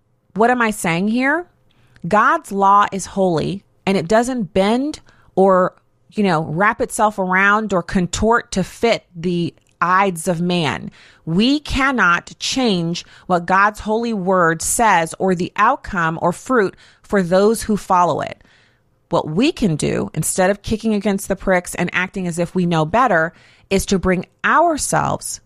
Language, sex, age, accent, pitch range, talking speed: English, female, 30-49, American, 165-205 Hz, 155 wpm